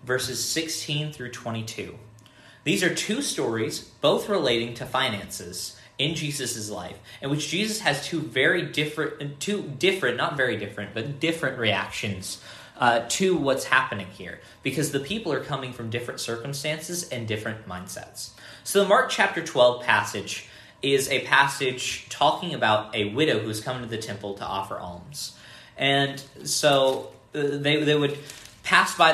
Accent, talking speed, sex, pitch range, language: American, 150 wpm, male, 115-145 Hz, English